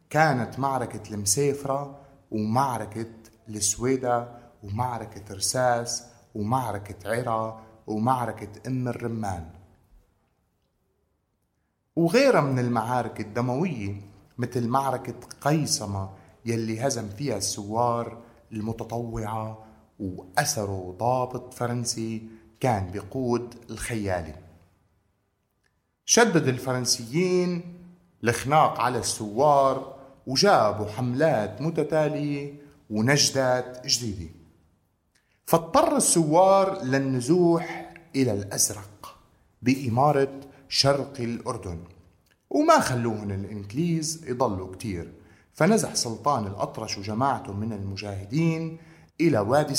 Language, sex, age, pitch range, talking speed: Arabic, male, 30-49, 105-140 Hz, 75 wpm